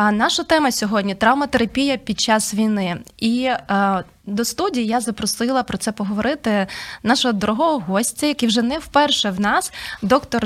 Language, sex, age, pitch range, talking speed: Ukrainian, female, 20-39, 200-250 Hz, 160 wpm